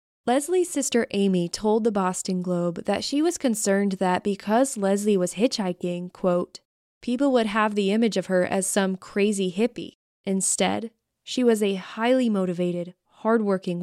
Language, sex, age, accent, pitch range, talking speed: English, female, 20-39, American, 185-235 Hz, 150 wpm